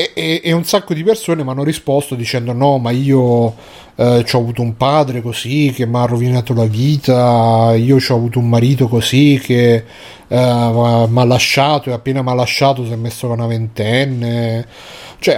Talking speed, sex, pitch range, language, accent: 185 wpm, male, 120-140 Hz, Italian, native